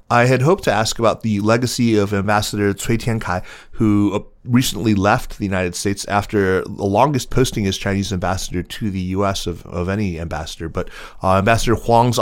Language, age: English, 30-49